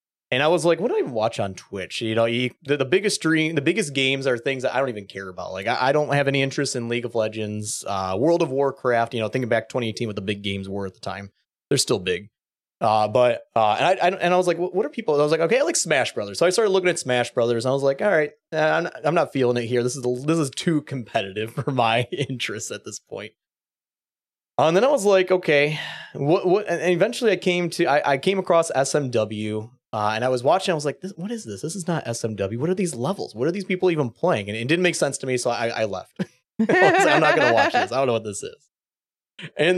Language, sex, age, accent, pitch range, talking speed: English, male, 20-39, American, 115-165 Hz, 275 wpm